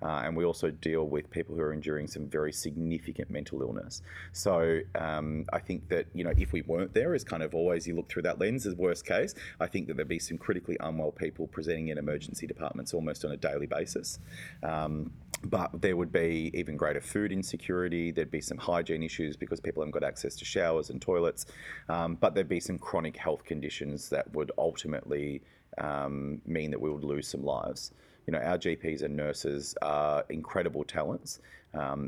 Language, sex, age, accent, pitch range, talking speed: English, male, 30-49, Australian, 75-85 Hz, 205 wpm